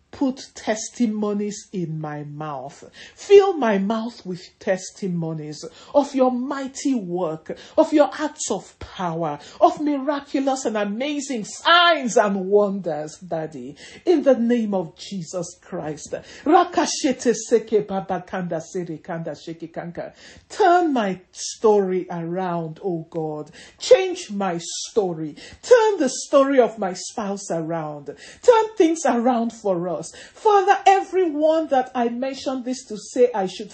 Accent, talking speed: Nigerian, 115 wpm